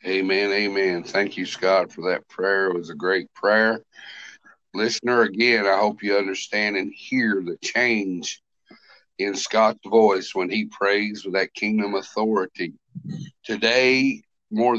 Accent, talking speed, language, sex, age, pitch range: American, 140 wpm, English, male, 50-69, 100-120 Hz